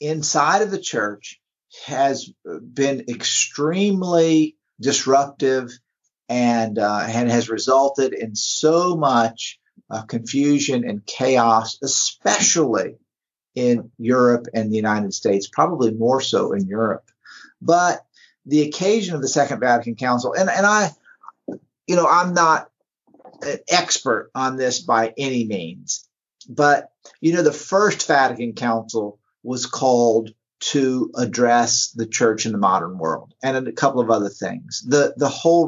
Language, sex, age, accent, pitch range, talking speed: English, male, 50-69, American, 115-150 Hz, 135 wpm